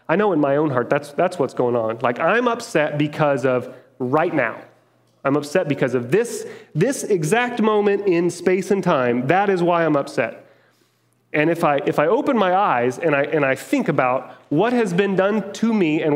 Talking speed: 210 wpm